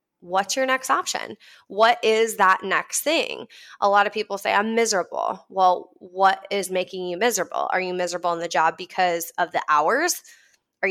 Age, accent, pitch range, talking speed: 20-39, American, 185-230 Hz, 180 wpm